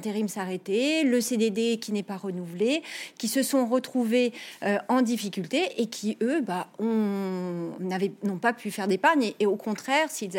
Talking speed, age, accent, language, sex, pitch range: 175 wpm, 40-59, French, French, female, 195-240 Hz